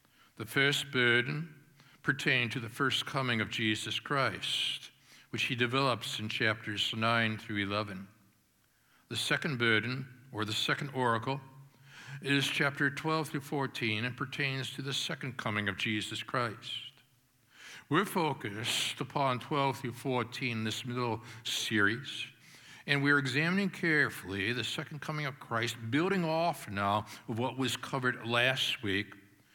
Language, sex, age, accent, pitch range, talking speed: English, male, 60-79, American, 115-145 Hz, 140 wpm